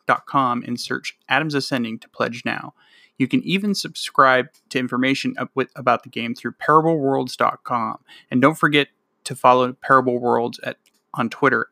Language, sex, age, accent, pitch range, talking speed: English, male, 30-49, American, 125-160 Hz, 155 wpm